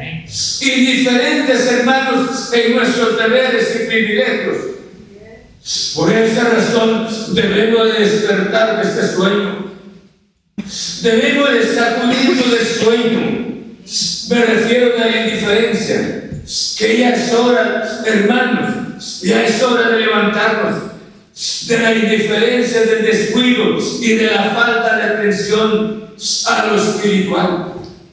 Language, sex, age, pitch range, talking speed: Spanish, male, 60-79, 210-235 Hz, 105 wpm